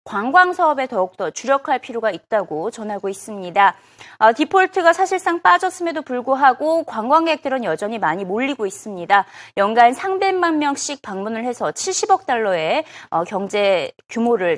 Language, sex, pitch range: Korean, female, 215-330 Hz